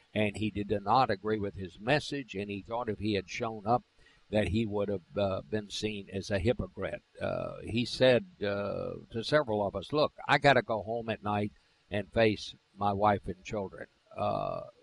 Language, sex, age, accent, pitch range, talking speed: English, male, 60-79, American, 105-130 Hz, 200 wpm